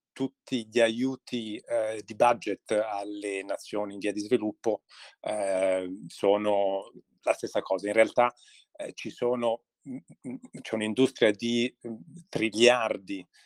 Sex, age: male, 40-59